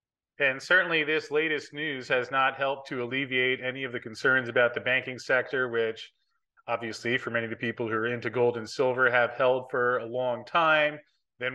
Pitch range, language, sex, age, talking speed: 125-140 Hz, English, male, 30-49, 195 wpm